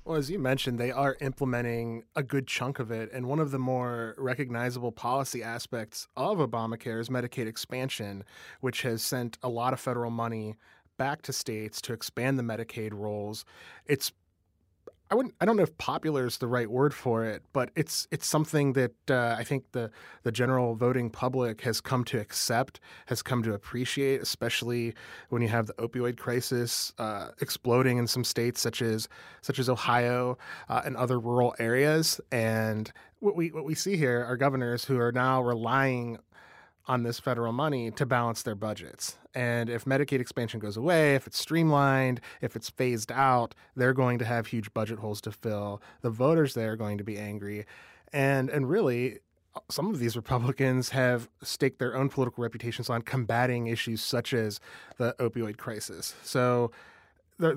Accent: American